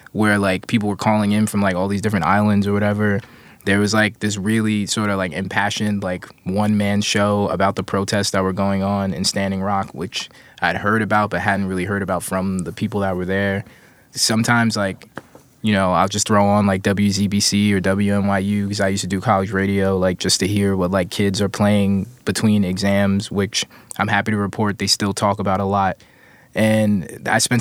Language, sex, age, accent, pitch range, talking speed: English, male, 20-39, American, 95-110 Hz, 205 wpm